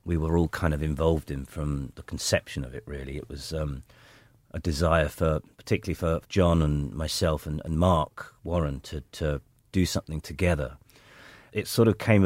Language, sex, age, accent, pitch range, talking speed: English, male, 40-59, British, 80-100 Hz, 180 wpm